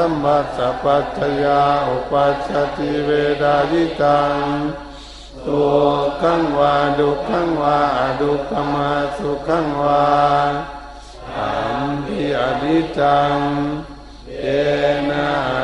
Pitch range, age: 140-145 Hz, 60-79